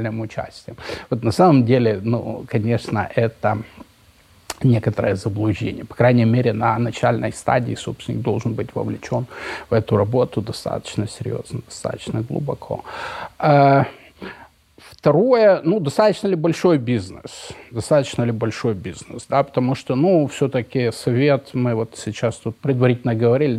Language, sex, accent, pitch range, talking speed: Ukrainian, male, native, 115-140 Hz, 125 wpm